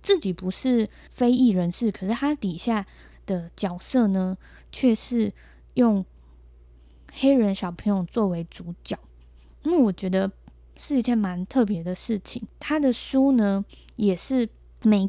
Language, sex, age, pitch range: Chinese, female, 10-29, 180-245 Hz